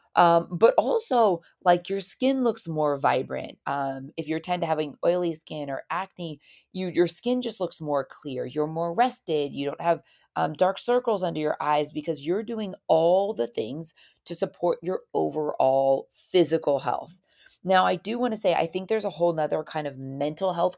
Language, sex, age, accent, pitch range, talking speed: English, female, 30-49, American, 150-185 Hz, 190 wpm